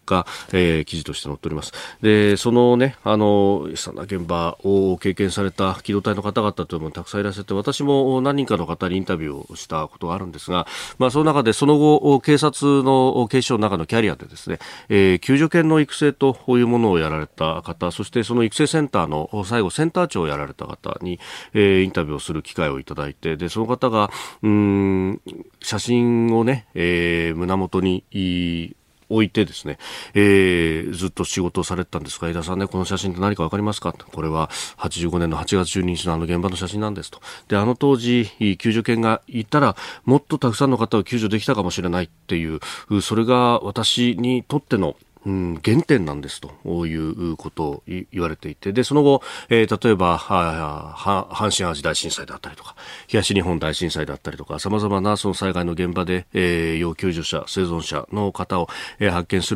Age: 40-59